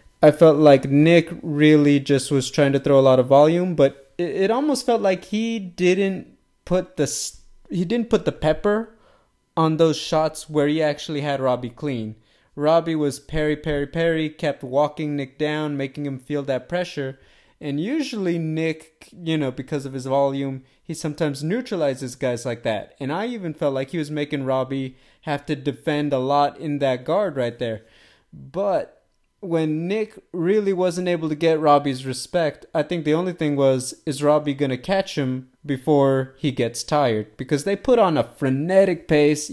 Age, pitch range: 20-39, 140-175 Hz